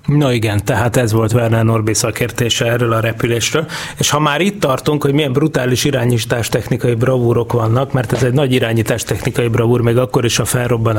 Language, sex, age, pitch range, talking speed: Hungarian, male, 30-49, 115-140 Hz, 190 wpm